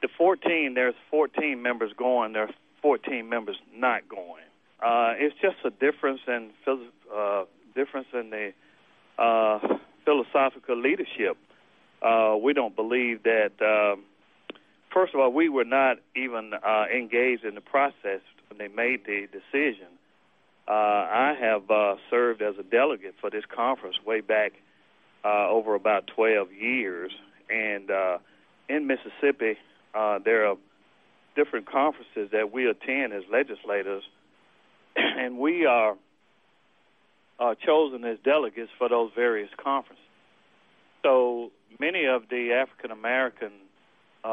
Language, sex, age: English, male, 40-59